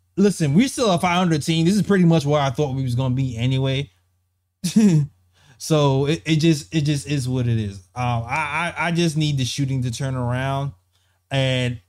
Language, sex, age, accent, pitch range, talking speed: English, male, 20-39, American, 110-155 Hz, 200 wpm